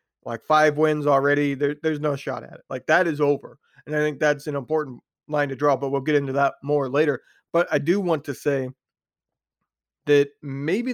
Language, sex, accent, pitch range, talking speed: English, male, American, 145-170 Hz, 205 wpm